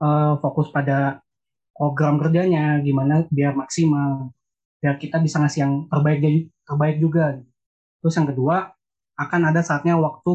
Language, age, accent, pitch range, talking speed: Indonesian, 20-39, native, 135-160 Hz, 130 wpm